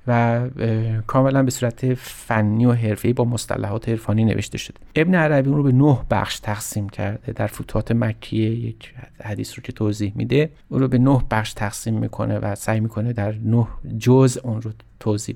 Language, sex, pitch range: Persian, male, 110-130 Hz